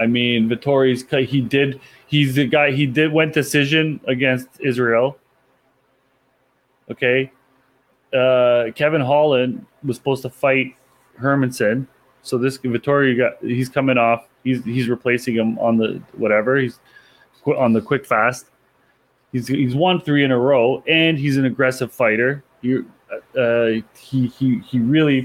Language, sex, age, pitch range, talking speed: English, male, 20-39, 115-135 Hz, 140 wpm